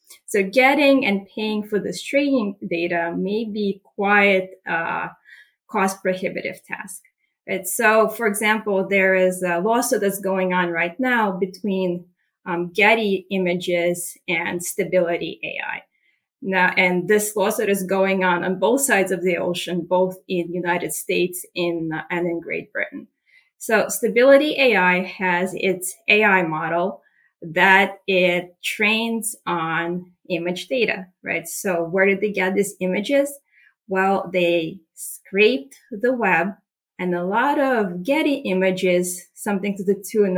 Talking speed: 135 wpm